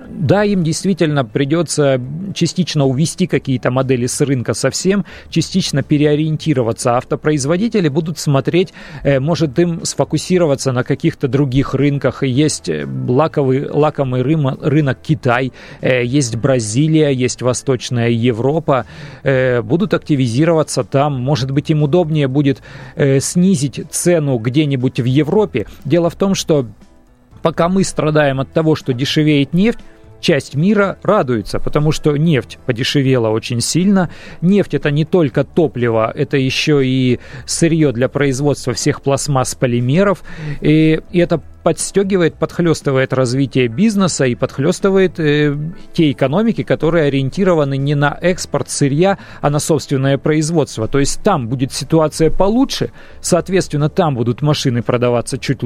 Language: Russian